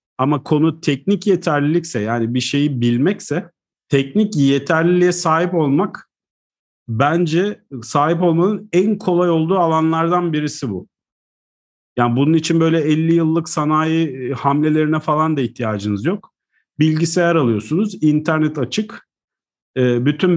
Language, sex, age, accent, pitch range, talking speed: Turkish, male, 50-69, native, 130-165 Hz, 110 wpm